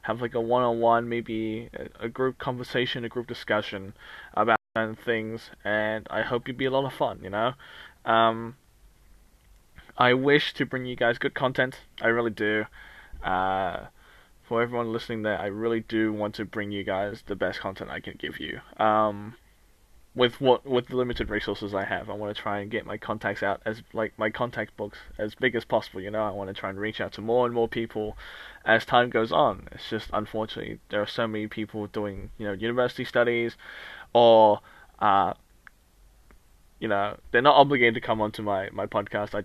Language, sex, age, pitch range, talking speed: English, male, 20-39, 105-120 Hz, 195 wpm